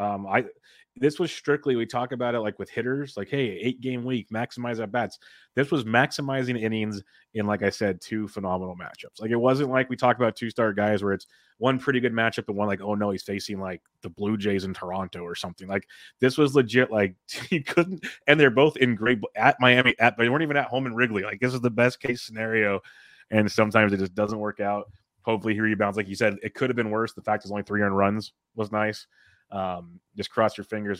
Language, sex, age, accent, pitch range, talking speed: English, male, 30-49, American, 100-120 Hz, 240 wpm